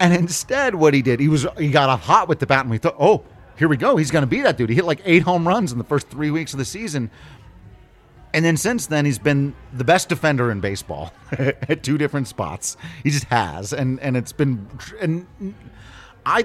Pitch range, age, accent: 115-155 Hz, 30-49, American